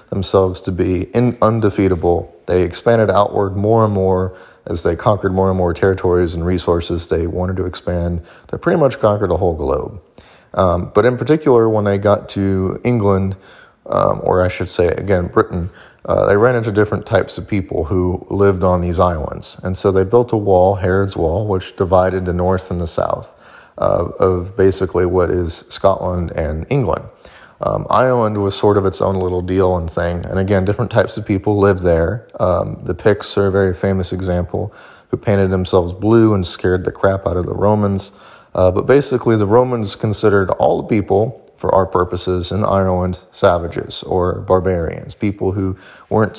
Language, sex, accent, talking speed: English, male, American, 185 wpm